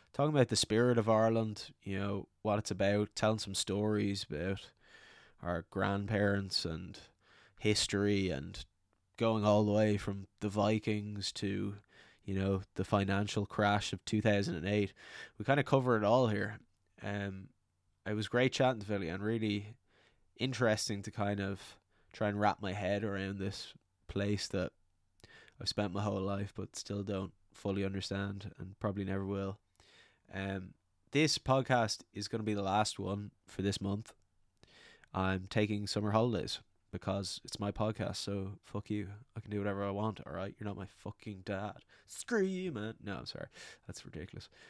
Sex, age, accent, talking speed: male, 10-29, Irish, 165 wpm